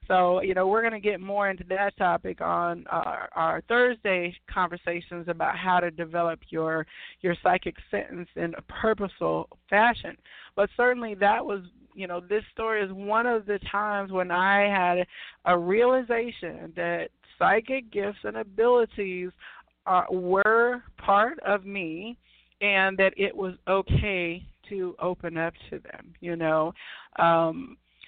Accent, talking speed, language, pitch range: American, 145 wpm, English, 180-210 Hz